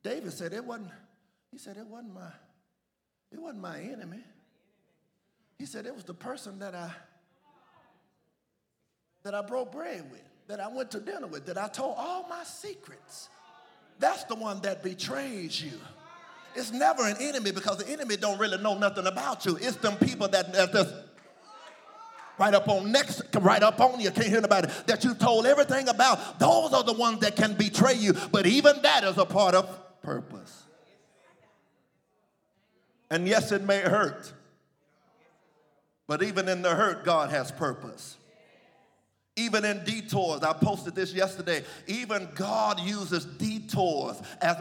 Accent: American